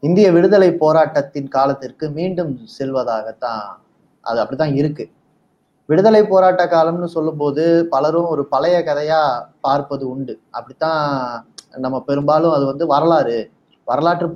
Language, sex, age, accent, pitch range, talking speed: Tamil, male, 30-49, native, 140-175 Hz, 110 wpm